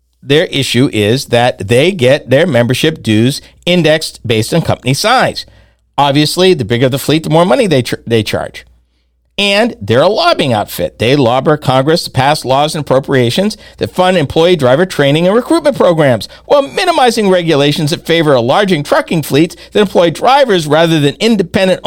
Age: 50-69